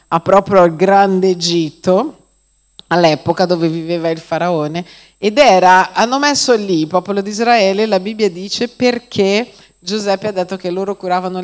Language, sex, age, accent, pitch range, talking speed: Italian, female, 40-59, native, 180-225 Hz, 150 wpm